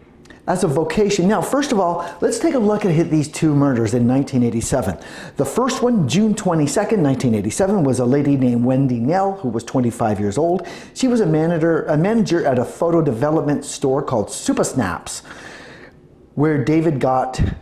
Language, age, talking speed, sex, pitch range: English, 40-59, 175 wpm, male, 125-170 Hz